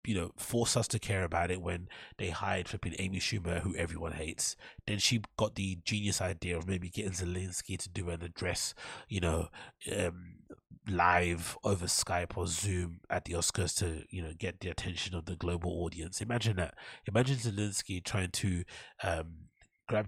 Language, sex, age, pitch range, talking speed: English, male, 30-49, 85-100 Hz, 180 wpm